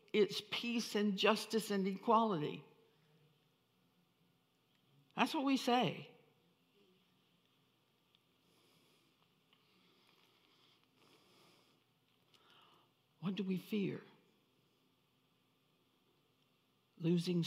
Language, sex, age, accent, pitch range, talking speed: English, female, 60-79, American, 160-210 Hz, 50 wpm